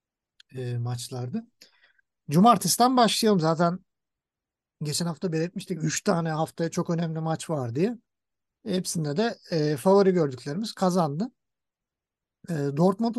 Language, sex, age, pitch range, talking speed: Turkish, male, 50-69, 155-210 Hz, 95 wpm